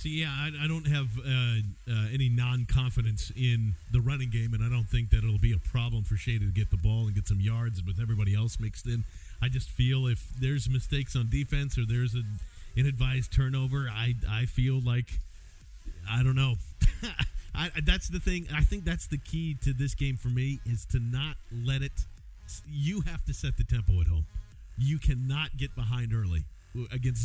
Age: 40-59